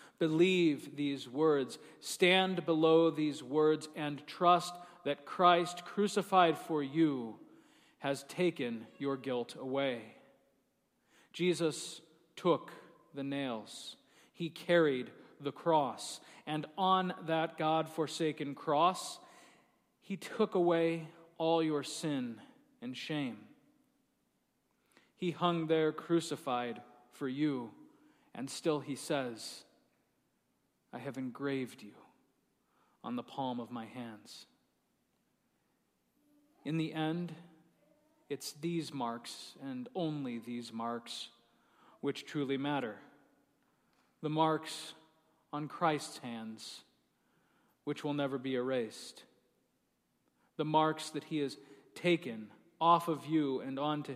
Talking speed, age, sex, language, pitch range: 105 wpm, 40-59, male, English, 135-170 Hz